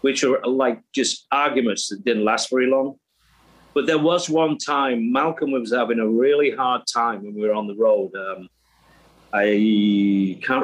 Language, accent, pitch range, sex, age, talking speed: English, British, 105-150 Hz, male, 40-59, 175 wpm